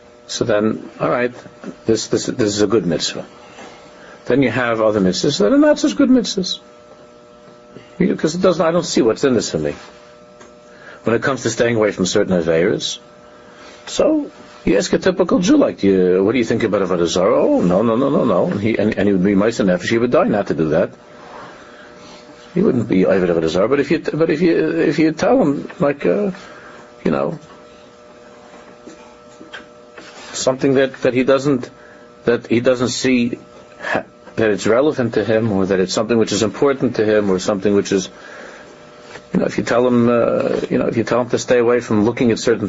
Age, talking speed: 60-79, 205 wpm